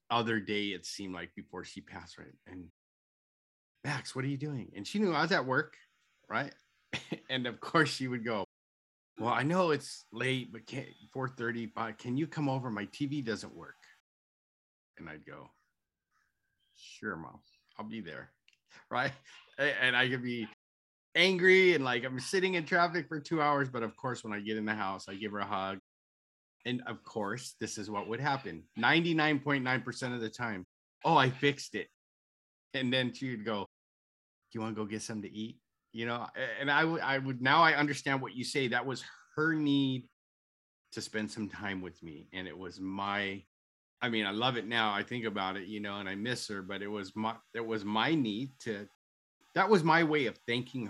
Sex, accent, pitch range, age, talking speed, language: male, American, 100-130 Hz, 30-49, 200 wpm, English